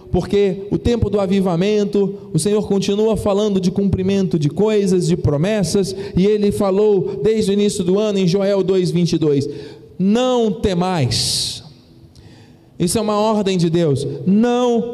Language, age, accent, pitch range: Portuguese, 40-59, Brazilian, 175-220 Hz